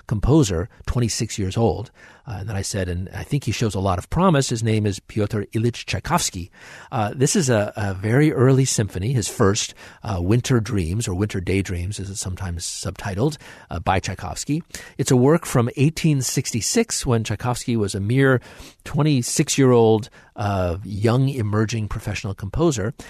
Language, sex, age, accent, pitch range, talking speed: English, male, 50-69, American, 100-125 Hz, 165 wpm